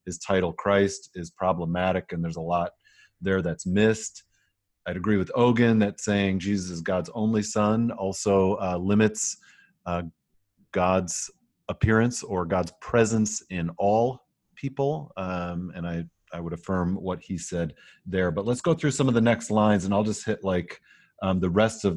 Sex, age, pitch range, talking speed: male, 40-59, 95-120 Hz, 170 wpm